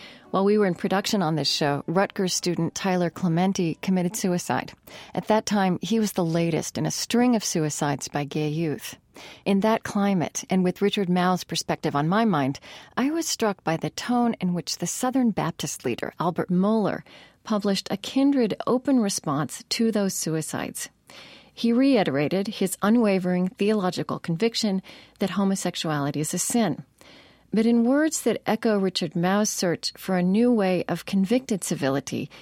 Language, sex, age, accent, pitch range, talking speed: English, female, 40-59, American, 170-215 Hz, 165 wpm